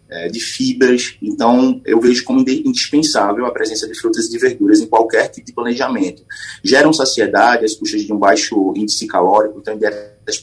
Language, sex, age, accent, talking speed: Portuguese, male, 30-49, Brazilian, 180 wpm